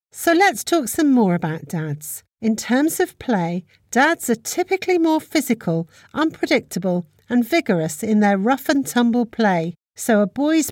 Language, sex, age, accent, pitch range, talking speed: English, female, 50-69, British, 180-275 Hz, 155 wpm